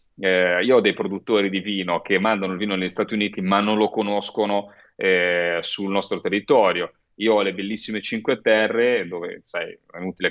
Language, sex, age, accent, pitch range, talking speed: Italian, male, 30-49, native, 95-125 Hz, 185 wpm